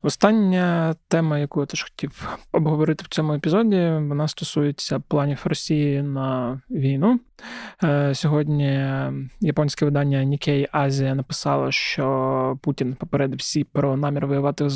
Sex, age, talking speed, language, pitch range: male, 20-39, 120 wpm, Ukrainian, 140-155 Hz